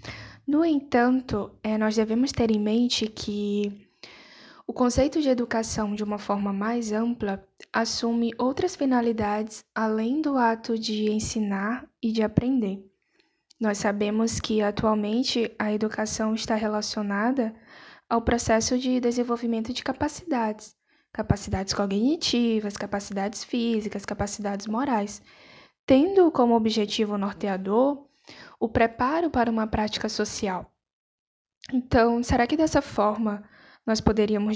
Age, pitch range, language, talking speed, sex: 10-29, 205-240 Hz, Portuguese, 115 wpm, female